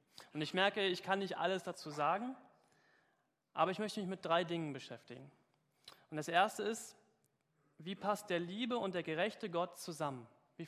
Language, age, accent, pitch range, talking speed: German, 30-49, German, 150-190 Hz, 175 wpm